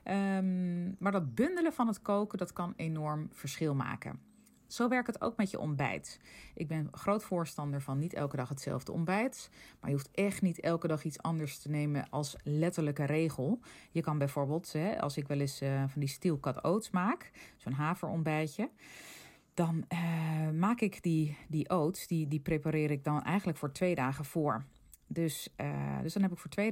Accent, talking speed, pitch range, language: Dutch, 190 wpm, 140-175 Hz, Dutch